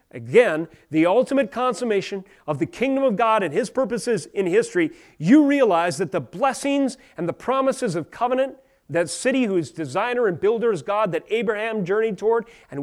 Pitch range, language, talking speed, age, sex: 160-225 Hz, English, 175 wpm, 30-49, male